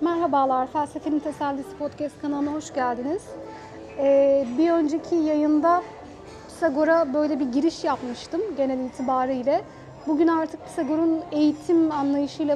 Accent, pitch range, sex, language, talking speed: native, 280-330 Hz, female, Turkish, 110 wpm